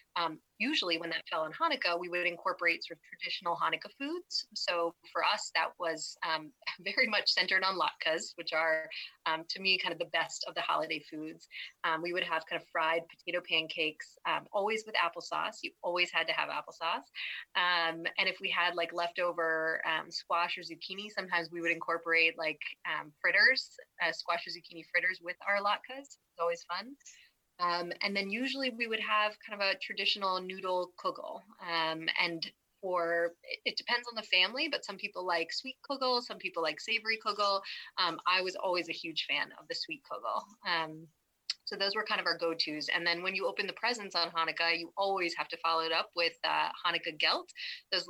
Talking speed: 200 wpm